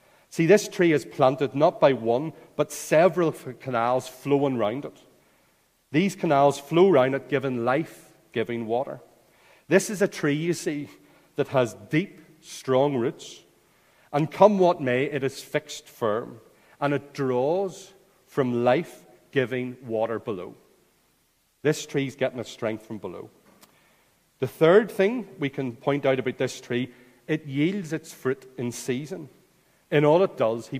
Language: English